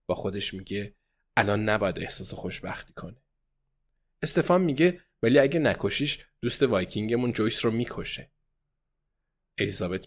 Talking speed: 115 wpm